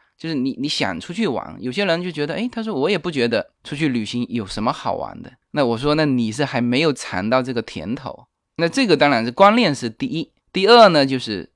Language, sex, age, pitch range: Chinese, male, 20-39, 115-170 Hz